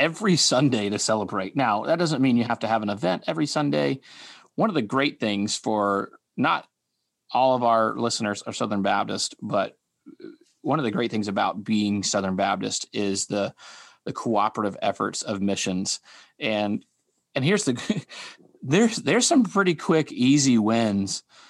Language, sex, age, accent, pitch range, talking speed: English, male, 30-49, American, 105-145 Hz, 160 wpm